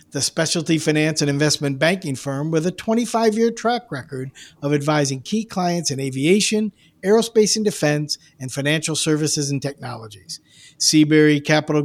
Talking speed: 140 wpm